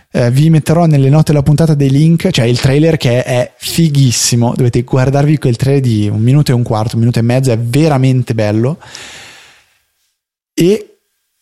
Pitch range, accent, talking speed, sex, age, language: 115-135 Hz, native, 170 wpm, male, 20-39, Italian